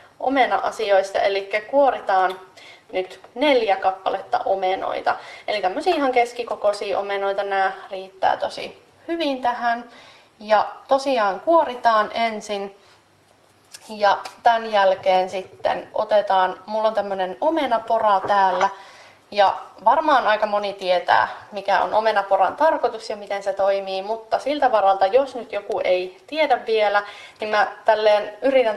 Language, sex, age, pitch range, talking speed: Finnish, female, 30-49, 195-240 Hz, 115 wpm